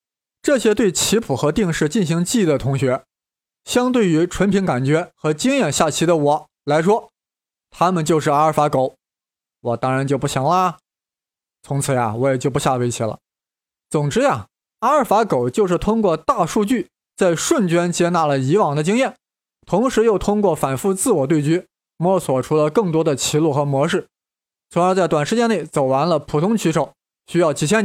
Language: Chinese